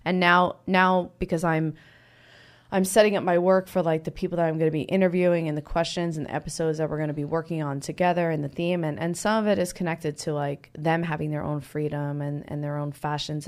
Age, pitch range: 20-39, 145-165 Hz